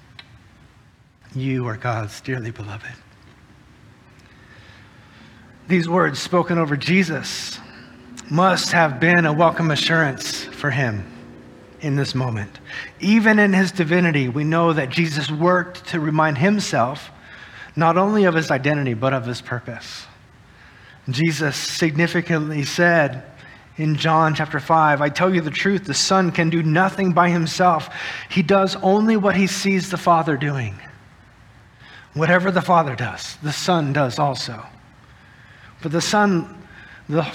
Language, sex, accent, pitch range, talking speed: English, male, American, 125-170 Hz, 130 wpm